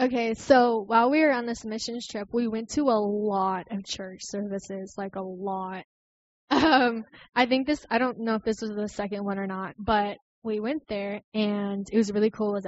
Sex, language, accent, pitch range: female, English, American, 205-230 Hz